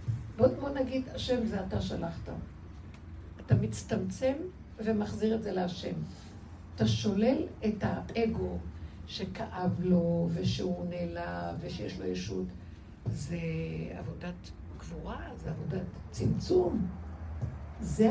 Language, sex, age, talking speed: Hebrew, female, 60-79, 105 wpm